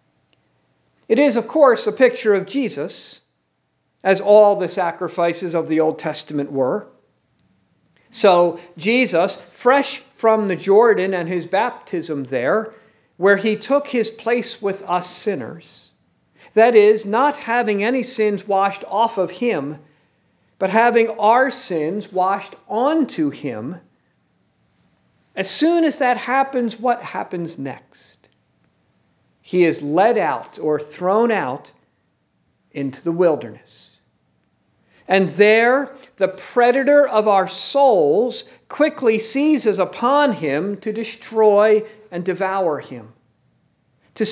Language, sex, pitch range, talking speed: English, male, 170-235 Hz, 120 wpm